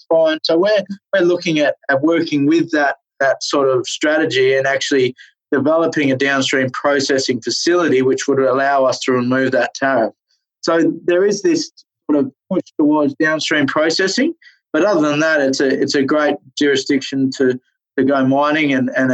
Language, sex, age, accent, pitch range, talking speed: English, male, 20-39, Australian, 130-155 Hz, 170 wpm